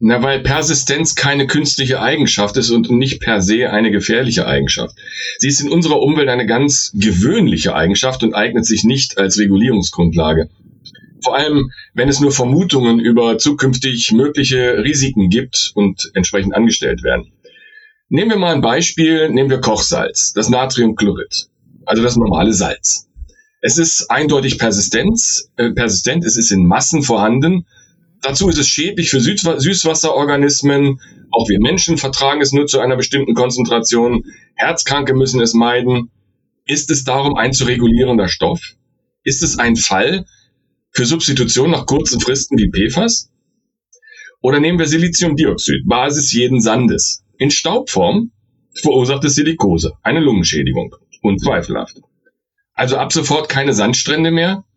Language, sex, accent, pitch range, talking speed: German, male, German, 115-160 Hz, 140 wpm